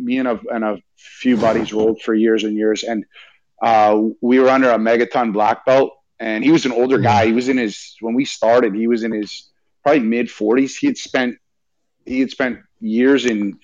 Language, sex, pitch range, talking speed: English, male, 110-135 Hz, 210 wpm